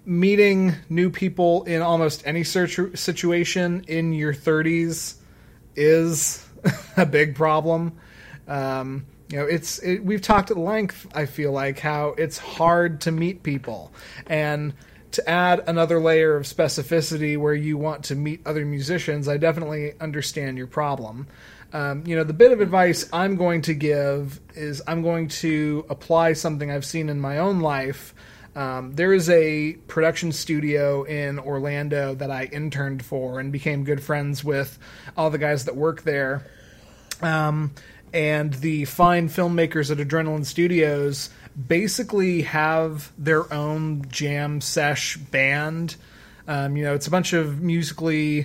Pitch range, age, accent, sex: 145-165 Hz, 30-49, American, male